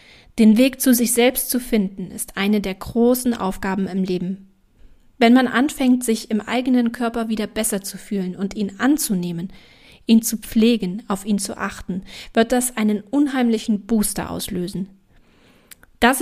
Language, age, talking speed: German, 40-59, 155 wpm